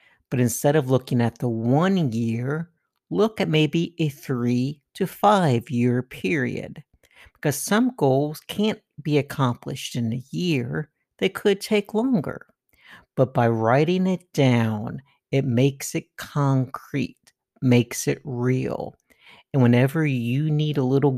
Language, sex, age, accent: English, male, 50-69, American